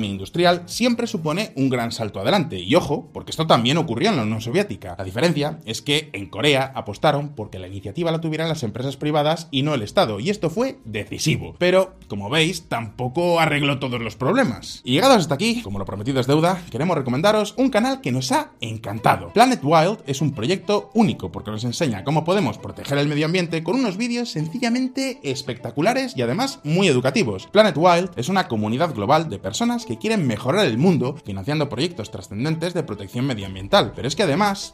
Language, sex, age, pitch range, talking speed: Spanish, male, 20-39, 120-195 Hz, 195 wpm